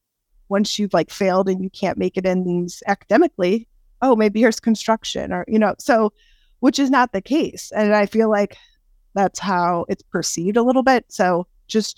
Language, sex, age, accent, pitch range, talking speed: English, female, 30-49, American, 180-225 Hz, 190 wpm